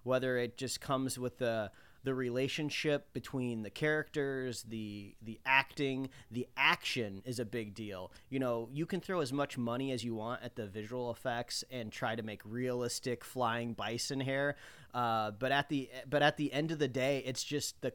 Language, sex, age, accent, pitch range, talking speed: English, male, 30-49, American, 120-145 Hz, 190 wpm